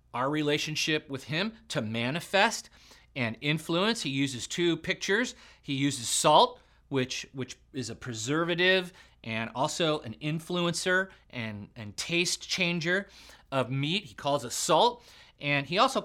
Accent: American